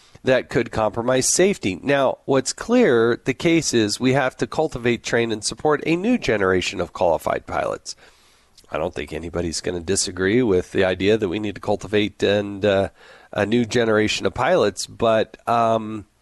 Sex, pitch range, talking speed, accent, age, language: male, 100-135 Hz, 175 wpm, American, 40-59, English